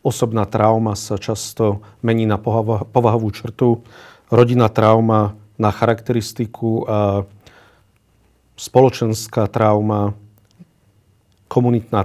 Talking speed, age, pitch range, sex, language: 80 wpm, 40-59, 105-115 Hz, male, Slovak